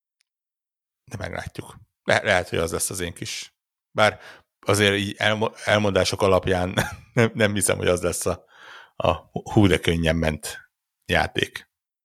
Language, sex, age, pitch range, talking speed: Hungarian, male, 60-79, 90-100 Hz, 145 wpm